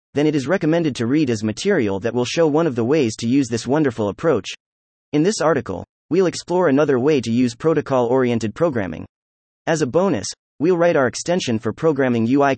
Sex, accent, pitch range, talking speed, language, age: male, American, 110-155 Hz, 195 wpm, English, 30-49